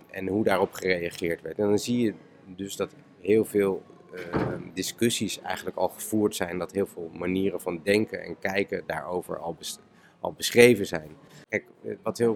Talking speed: 170 wpm